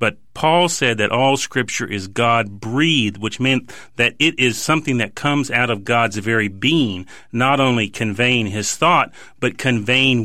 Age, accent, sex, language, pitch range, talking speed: 40-59, American, male, English, 110-135 Hz, 170 wpm